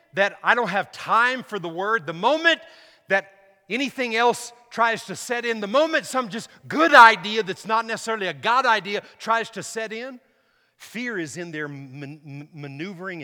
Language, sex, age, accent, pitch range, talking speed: English, male, 50-69, American, 150-225 Hz, 170 wpm